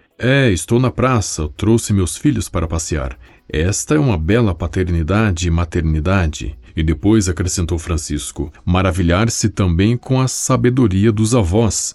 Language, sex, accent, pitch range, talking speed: Portuguese, male, Brazilian, 85-110 Hz, 135 wpm